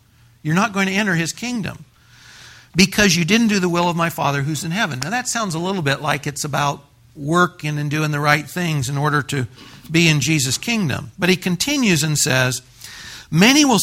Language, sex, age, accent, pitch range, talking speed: English, male, 60-79, American, 130-185 Hz, 210 wpm